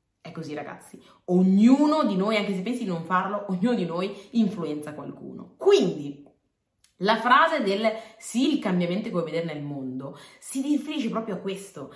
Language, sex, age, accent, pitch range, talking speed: Italian, female, 30-49, native, 165-235 Hz, 170 wpm